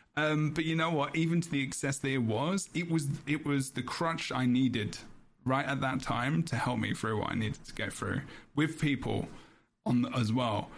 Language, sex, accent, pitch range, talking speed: English, male, British, 120-150 Hz, 225 wpm